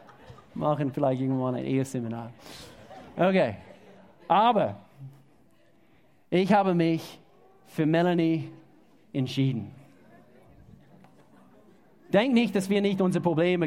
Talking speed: 90 wpm